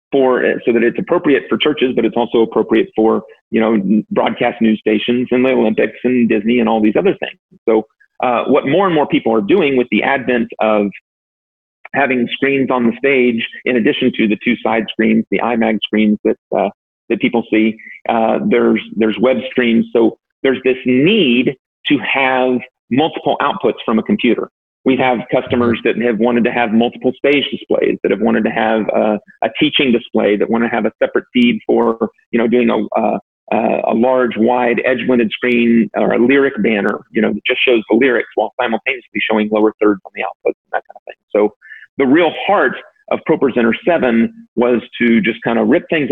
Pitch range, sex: 110-125 Hz, male